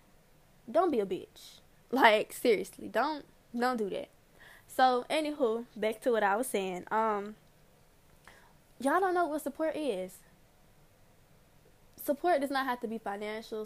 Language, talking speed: English, 145 wpm